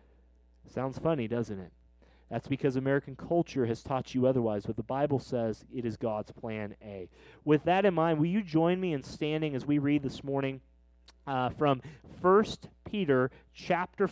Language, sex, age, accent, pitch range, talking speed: English, male, 30-49, American, 130-175 Hz, 175 wpm